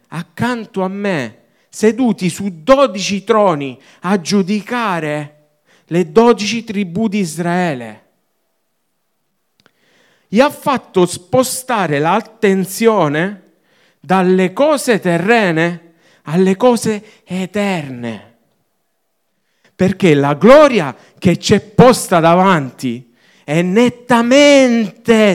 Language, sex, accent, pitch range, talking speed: Italian, male, native, 170-235 Hz, 85 wpm